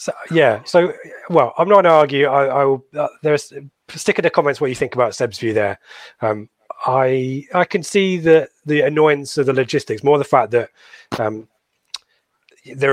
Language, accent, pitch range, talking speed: English, British, 120-150 Hz, 200 wpm